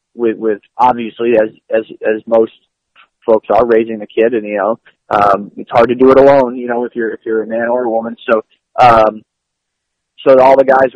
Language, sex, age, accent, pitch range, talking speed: English, male, 20-39, American, 120-150 Hz, 215 wpm